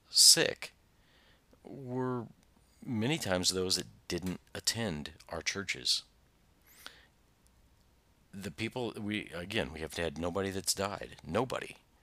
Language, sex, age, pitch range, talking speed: English, male, 50-69, 80-105 Hz, 110 wpm